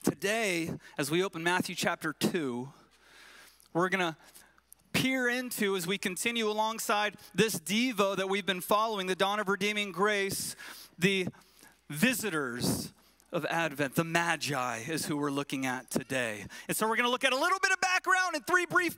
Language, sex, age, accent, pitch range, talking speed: English, male, 30-49, American, 195-270 Hz, 165 wpm